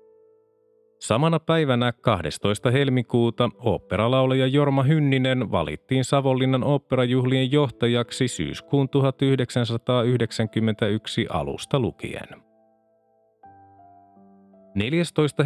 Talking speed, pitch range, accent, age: 60 wpm, 115-140 Hz, native, 30-49